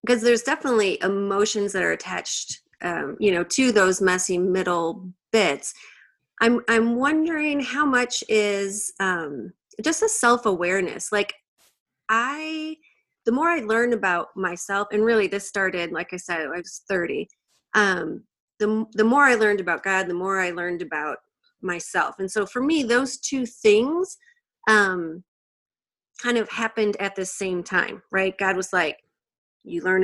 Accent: American